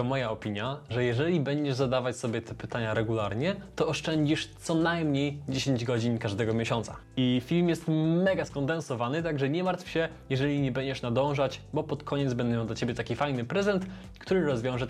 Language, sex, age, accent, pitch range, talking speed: Polish, male, 20-39, native, 125-155 Hz, 175 wpm